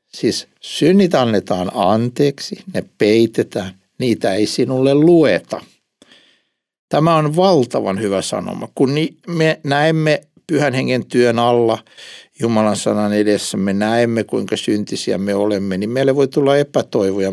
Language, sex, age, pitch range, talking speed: Finnish, male, 60-79, 105-165 Hz, 125 wpm